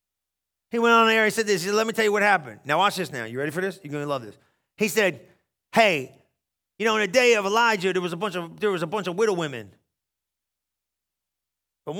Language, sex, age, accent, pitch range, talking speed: English, male, 40-59, American, 170-225 Hz, 255 wpm